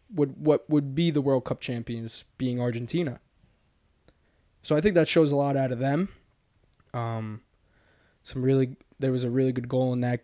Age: 20-39